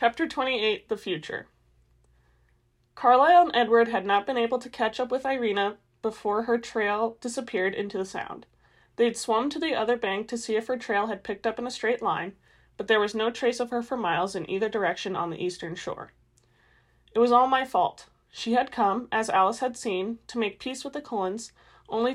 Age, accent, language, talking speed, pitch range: 30-49, American, English, 205 wpm, 190-235 Hz